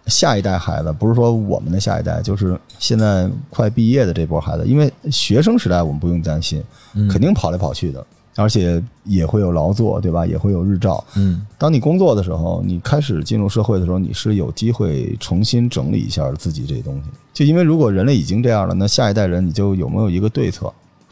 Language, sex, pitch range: Chinese, male, 95-120 Hz